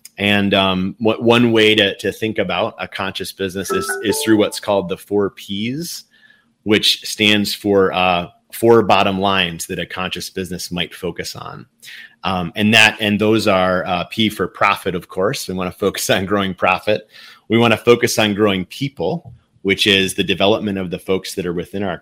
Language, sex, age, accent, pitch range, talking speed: English, male, 30-49, American, 90-110 Hz, 195 wpm